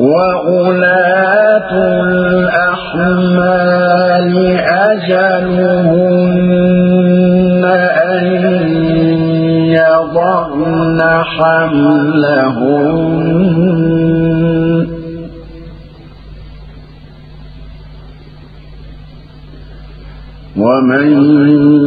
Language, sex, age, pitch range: Arabic, male, 50-69, 155-180 Hz